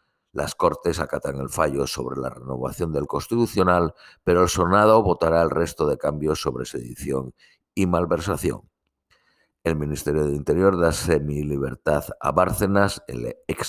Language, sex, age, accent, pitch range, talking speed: Spanish, male, 50-69, Spanish, 70-95 Hz, 145 wpm